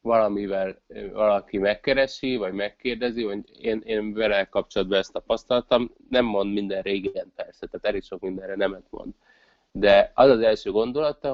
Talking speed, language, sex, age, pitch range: 150 wpm, Hungarian, male, 30-49, 95-115 Hz